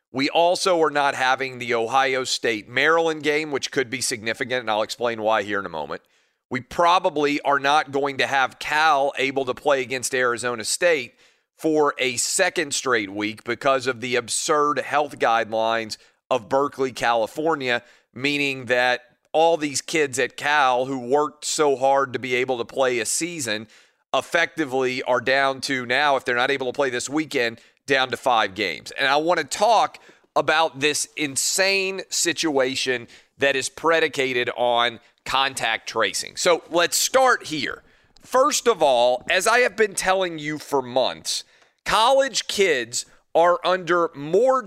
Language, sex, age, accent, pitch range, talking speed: English, male, 40-59, American, 125-170 Hz, 160 wpm